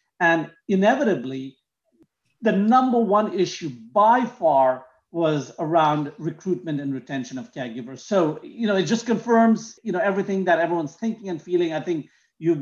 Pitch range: 145-185 Hz